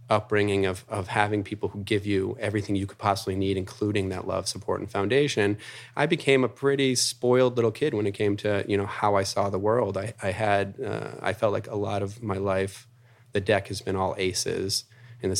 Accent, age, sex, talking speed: American, 30-49, male, 220 wpm